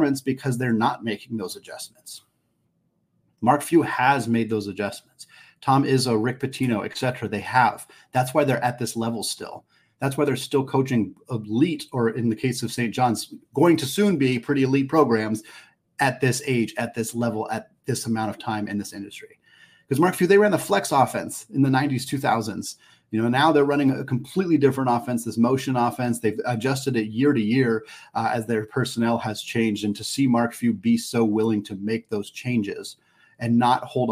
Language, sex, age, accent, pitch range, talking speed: English, male, 30-49, American, 115-135 Hz, 195 wpm